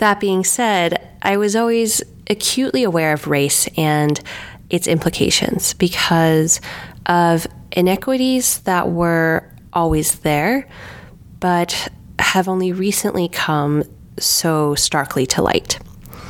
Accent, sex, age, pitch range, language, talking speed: American, female, 20-39, 155-185 Hz, English, 105 wpm